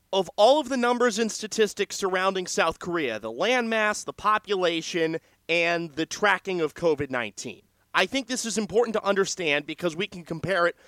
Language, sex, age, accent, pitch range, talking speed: English, male, 30-49, American, 160-215 Hz, 170 wpm